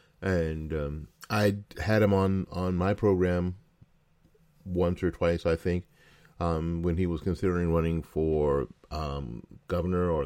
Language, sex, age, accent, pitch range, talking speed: English, male, 40-59, American, 80-120 Hz, 140 wpm